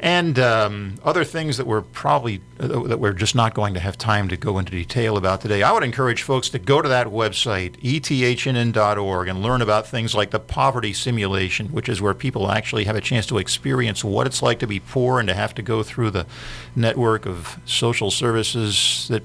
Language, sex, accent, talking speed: English, male, American, 210 wpm